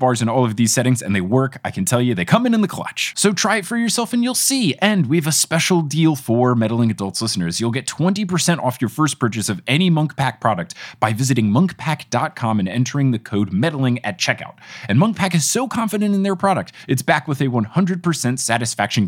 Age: 20-39